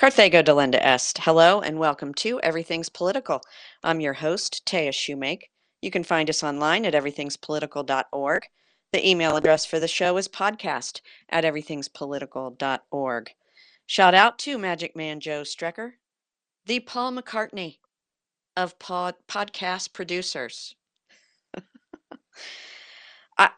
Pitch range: 160-205 Hz